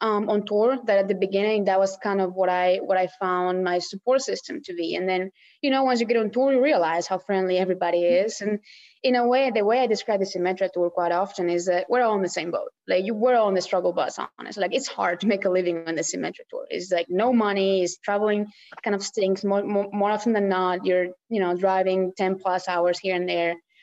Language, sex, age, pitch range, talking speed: English, female, 20-39, 180-210 Hz, 255 wpm